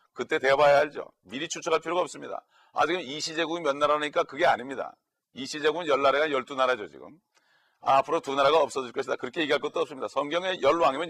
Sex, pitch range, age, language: male, 140-175 Hz, 40-59, Korean